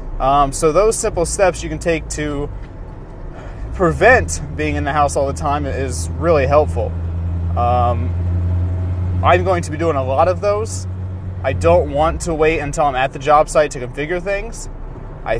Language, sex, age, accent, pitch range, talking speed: English, male, 20-39, American, 110-165 Hz, 175 wpm